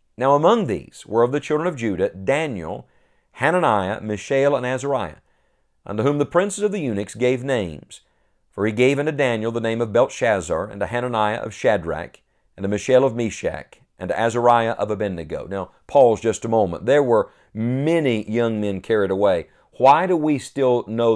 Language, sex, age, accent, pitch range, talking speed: English, male, 50-69, American, 100-130 Hz, 180 wpm